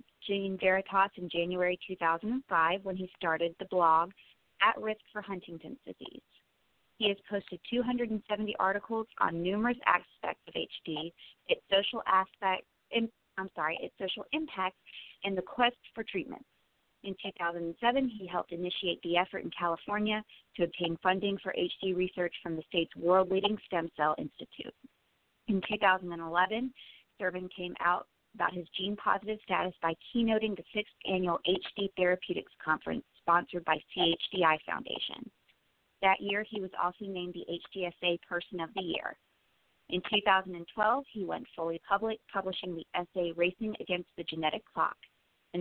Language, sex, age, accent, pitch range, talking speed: English, female, 30-49, American, 175-205 Hz, 140 wpm